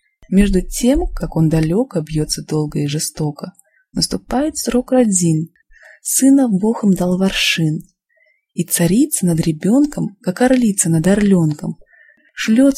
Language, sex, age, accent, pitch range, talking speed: Russian, female, 20-39, native, 165-245 Hz, 120 wpm